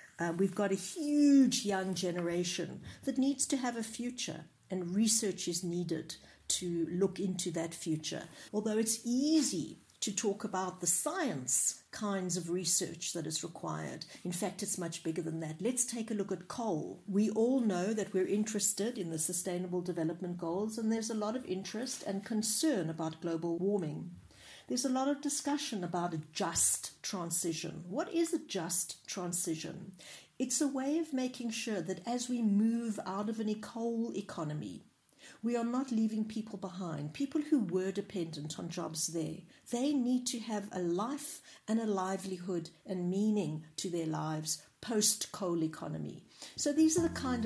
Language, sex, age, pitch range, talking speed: English, female, 60-79, 170-235 Hz, 170 wpm